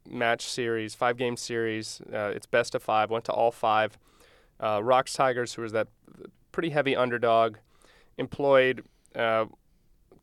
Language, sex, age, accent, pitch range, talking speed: English, male, 20-39, American, 110-125 Hz, 140 wpm